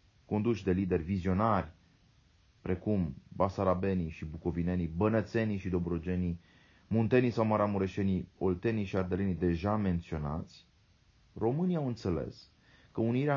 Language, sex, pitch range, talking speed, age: Romanian, male, 85-105 Hz, 110 wpm, 30-49